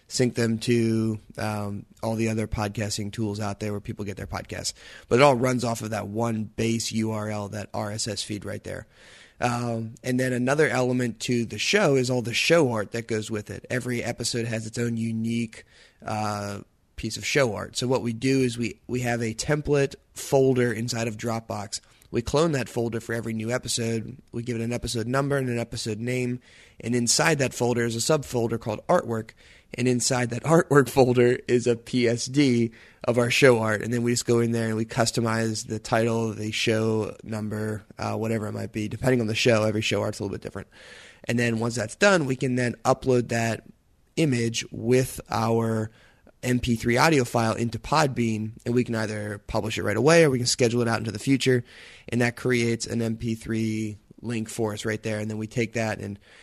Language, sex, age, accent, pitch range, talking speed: English, male, 20-39, American, 110-125 Hz, 205 wpm